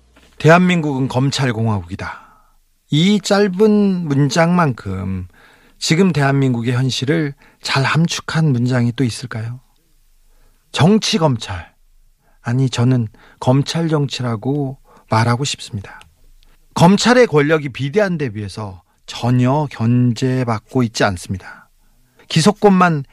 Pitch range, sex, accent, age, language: 120-175 Hz, male, native, 40-59, Korean